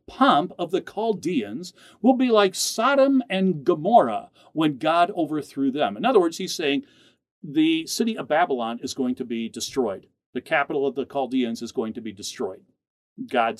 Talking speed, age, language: 170 wpm, 50-69, English